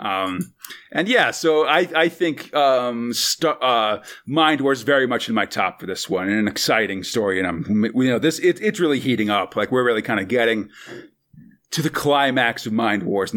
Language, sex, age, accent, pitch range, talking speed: English, male, 40-59, American, 135-215 Hz, 205 wpm